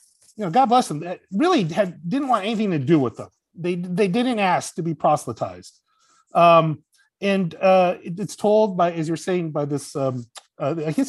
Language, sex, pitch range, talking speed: English, male, 145-190 Hz, 200 wpm